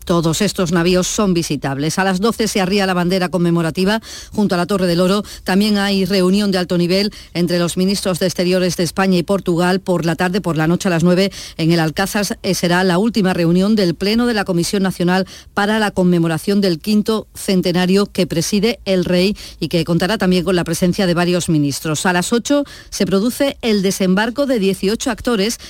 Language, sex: Spanish, female